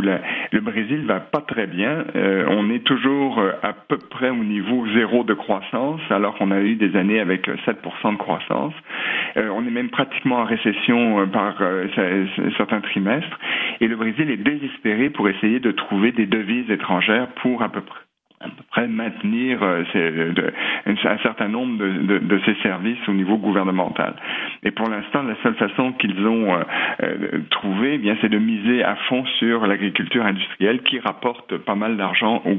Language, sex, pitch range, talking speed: French, male, 100-120 Hz, 175 wpm